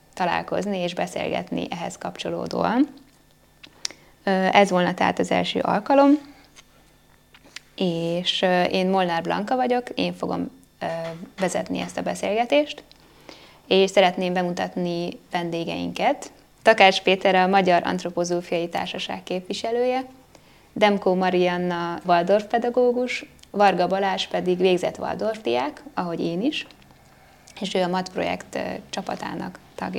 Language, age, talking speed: Hungarian, 20-39, 105 wpm